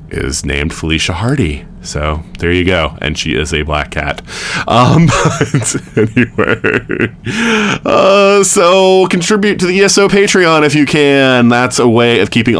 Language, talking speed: English, 150 wpm